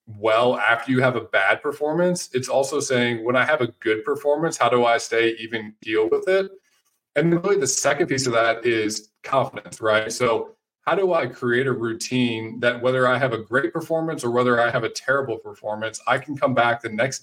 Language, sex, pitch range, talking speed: English, male, 115-140 Hz, 215 wpm